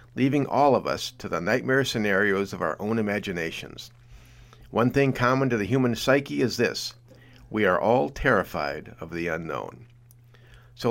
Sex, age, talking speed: male, 50-69, 160 wpm